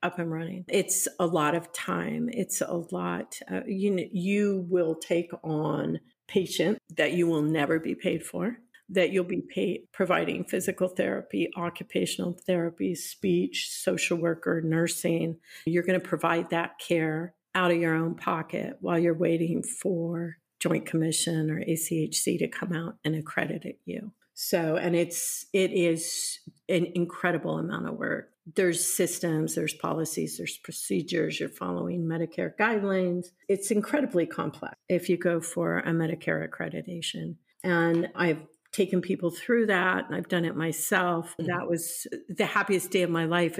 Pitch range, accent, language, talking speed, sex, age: 165-185 Hz, American, English, 155 wpm, female, 50-69